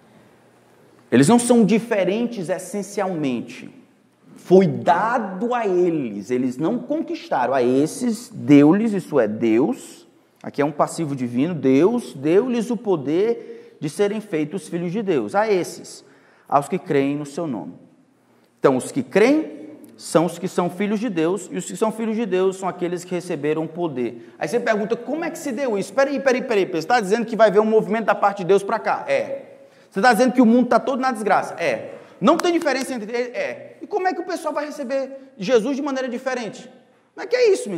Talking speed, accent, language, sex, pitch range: 200 wpm, Brazilian, Portuguese, male, 185-270 Hz